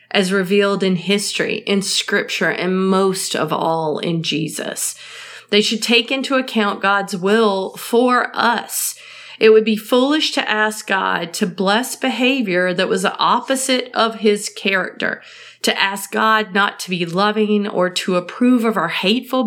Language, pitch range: English, 180-220 Hz